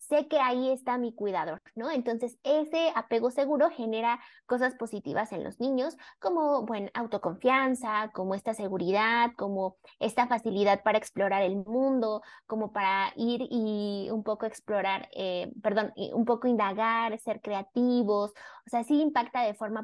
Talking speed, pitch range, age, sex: 150 wpm, 210-265 Hz, 20-39, female